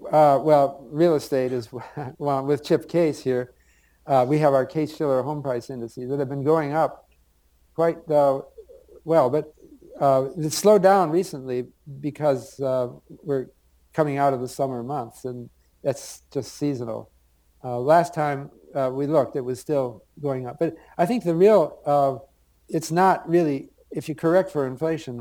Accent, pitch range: American, 120-150 Hz